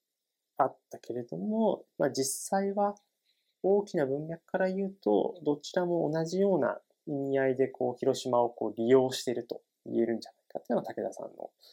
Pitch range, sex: 125-190 Hz, male